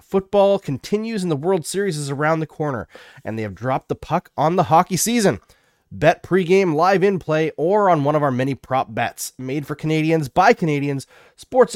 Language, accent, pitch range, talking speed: English, American, 125-175 Hz, 200 wpm